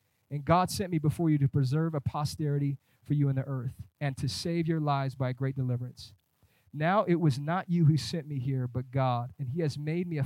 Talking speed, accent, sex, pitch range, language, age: 240 wpm, American, male, 140-195 Hz, English, 30-49